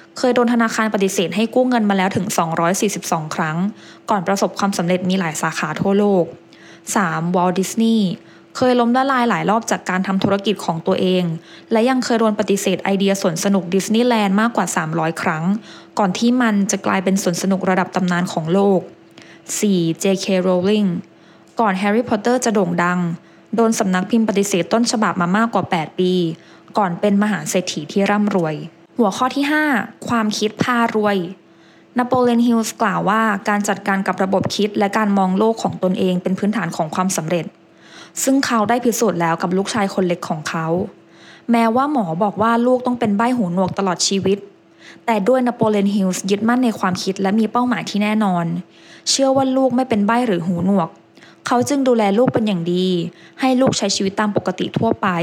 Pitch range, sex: 185-225 Hz, female